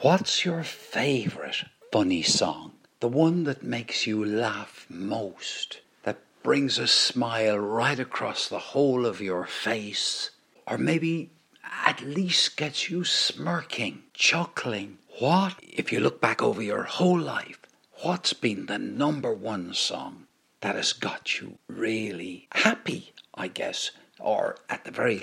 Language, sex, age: English, male, 60-79